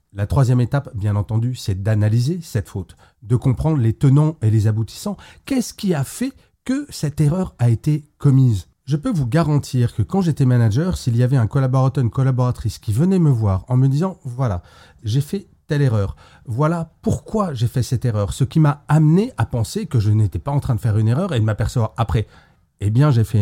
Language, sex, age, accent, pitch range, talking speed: French, male, 40-59, French, 110-145 Hz, 215 wpm